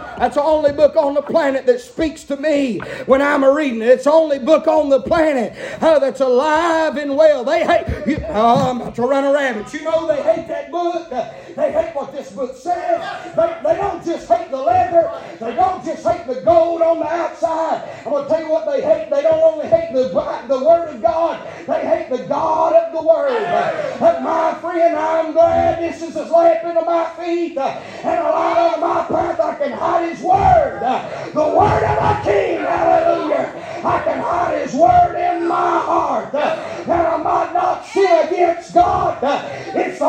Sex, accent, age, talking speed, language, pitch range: male, American, 40-59, 200 wpm, English, 310-355 Hz